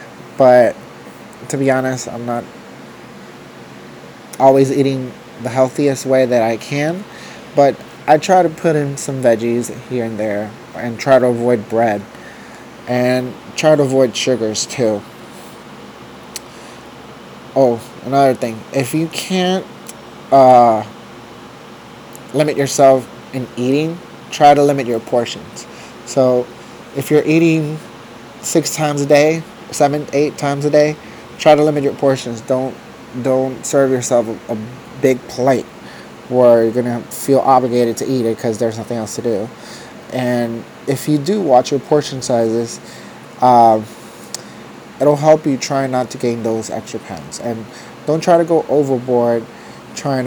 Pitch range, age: 115-140 Hz, 30-49